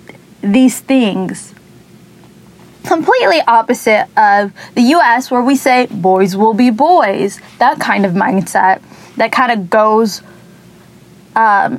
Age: 10-29